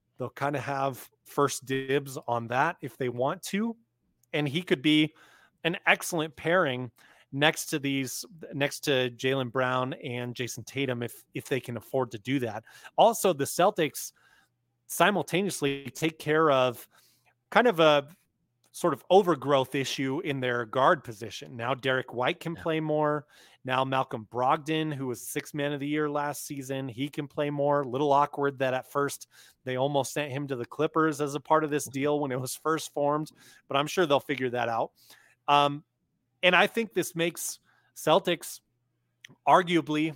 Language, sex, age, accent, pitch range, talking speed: English, male, 30-49, American, 130-155 Hz, 175 wpm